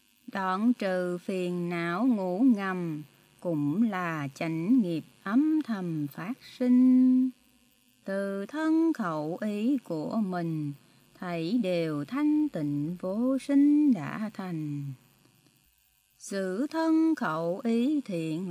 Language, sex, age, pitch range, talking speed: Vietnamese, female, 20-39, 170-270 Hz, 105 wpm